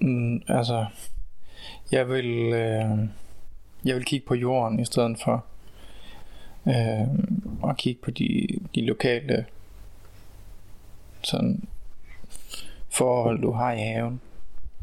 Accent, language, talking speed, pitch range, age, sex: native, Danish, 100 wpm, 105-130 Hz, 20-39, male